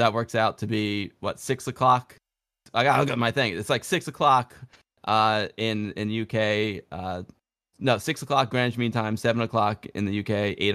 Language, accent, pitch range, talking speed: English, American, 105-120 Hz, 185 wpm